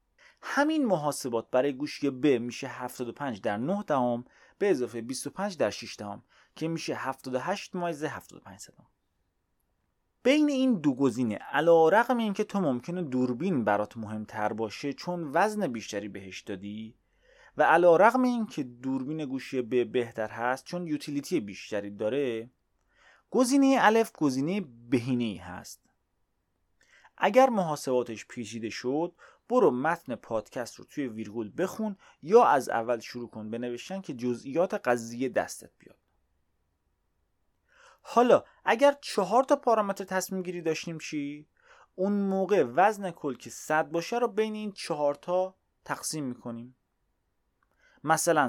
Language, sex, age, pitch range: Persian, male, 30-49, 115-185 Hz